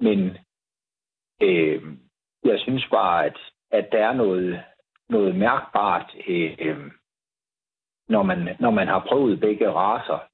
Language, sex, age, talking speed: Danish, male, 60-79, 130 wpm